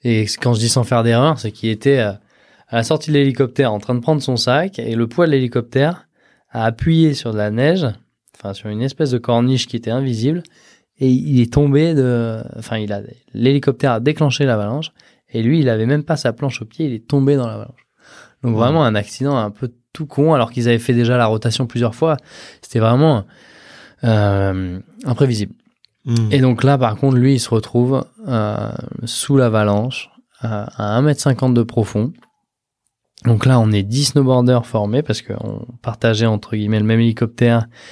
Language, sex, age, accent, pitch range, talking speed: French, male, 20-39, French, 110-140 Hz, 195 wpm